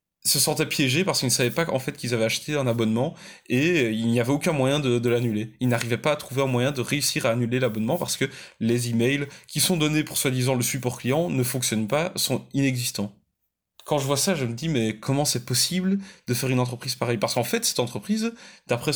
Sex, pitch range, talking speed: male, 120-165 Hz, 235 wpm